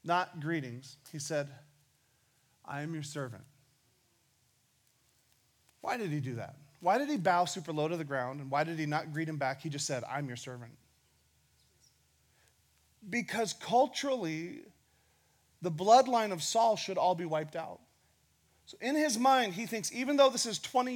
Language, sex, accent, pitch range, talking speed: English, male, American, 145-225 Hz, 165 wpm